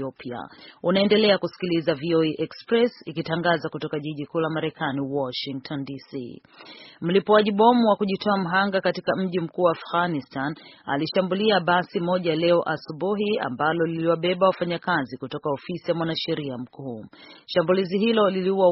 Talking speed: 120 wpm